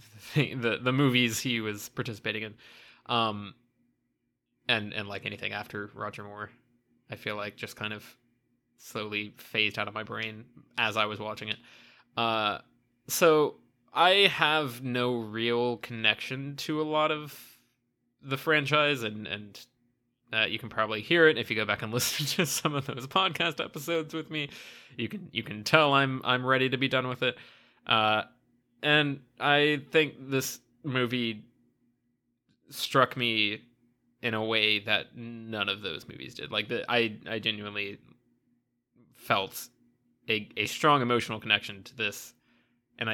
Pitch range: 110-130 Hz